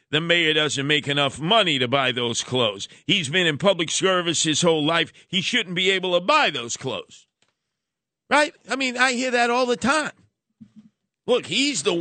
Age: 50-69